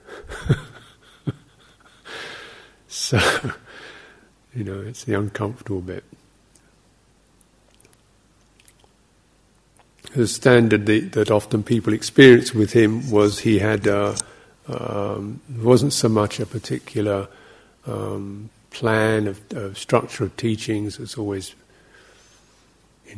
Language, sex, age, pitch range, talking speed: English, male, 50-69, 105-115 Hz, 90 wpm